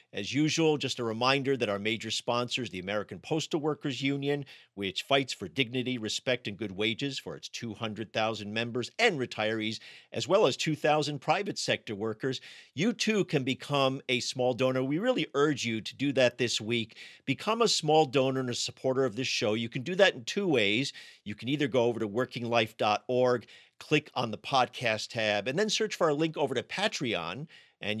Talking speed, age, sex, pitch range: 195 wpm, 50-69, male, 115-145 Hz